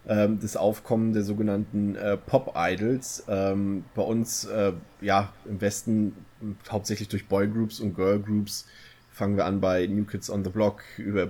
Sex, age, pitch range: male, 20-39, 100-115 Hz